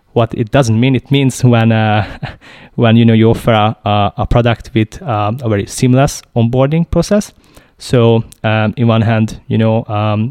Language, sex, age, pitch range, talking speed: English, male, 20-39, 110-125 Hz, 185 wpm